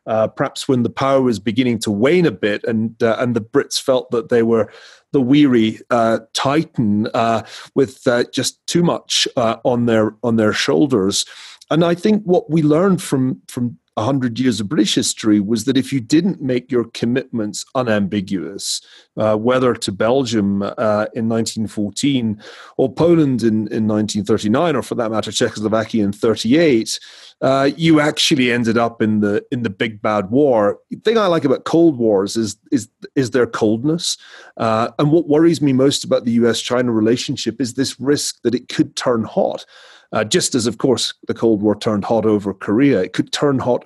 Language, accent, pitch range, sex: English, British, 110-140 Hz, male